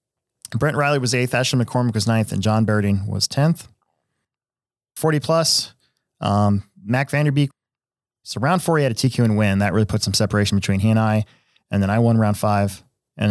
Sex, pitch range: male, 105-140 Hz